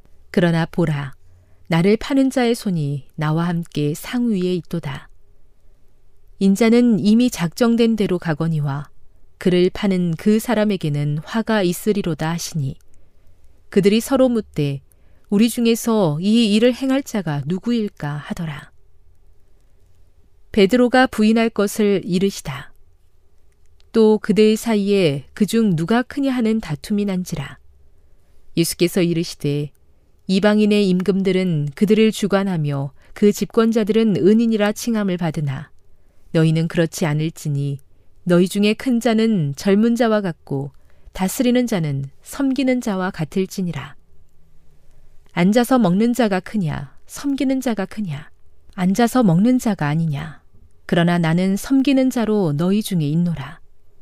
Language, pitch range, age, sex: Korean, 145-220 Hz, 40-59, female